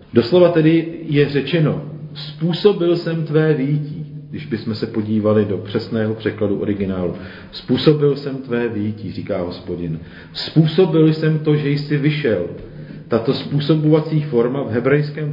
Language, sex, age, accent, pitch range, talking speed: Czech, male, 40-59, native, 110-150 Hz, 130 wpm